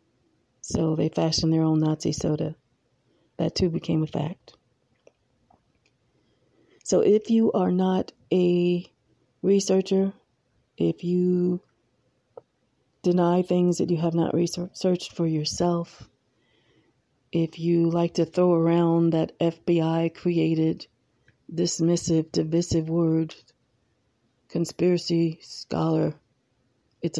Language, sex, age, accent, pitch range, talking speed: English, female, 40-59, American, 145-175 Hz, 95 wpm